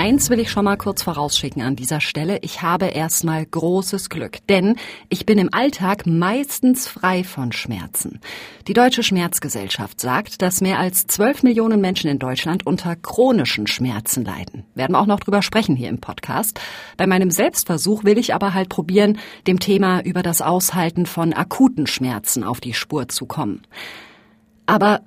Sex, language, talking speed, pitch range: female, German, 170 wpm, 165-215 Hz